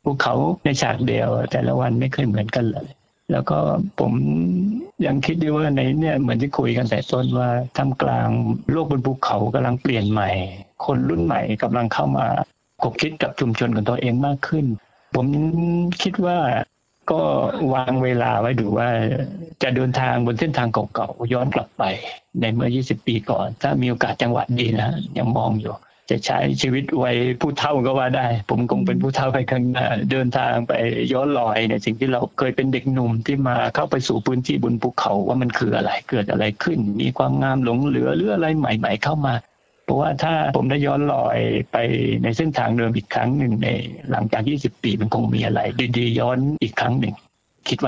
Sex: male